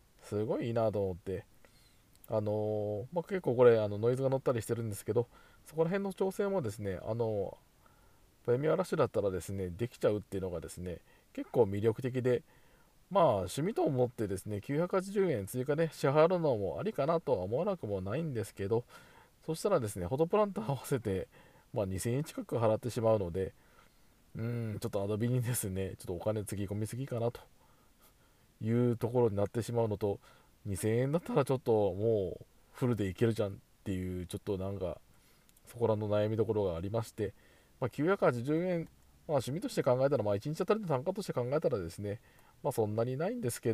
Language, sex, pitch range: Japanese, male, 105-140 Hz